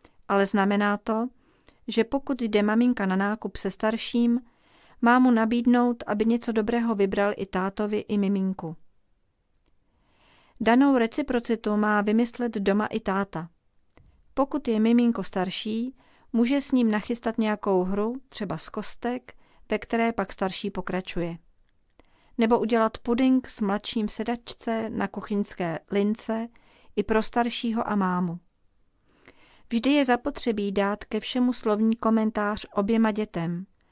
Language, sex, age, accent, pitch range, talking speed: Czech, female, 40-59, native, 200-235 Hz, 125 wpm